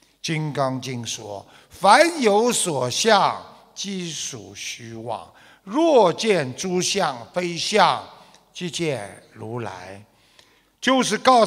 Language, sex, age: Chinese, male, 50-69